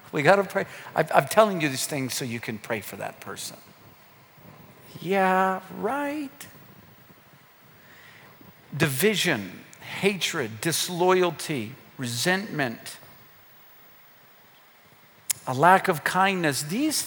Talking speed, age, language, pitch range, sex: 95 wpm, 50-69, English, 155-200 Hz, male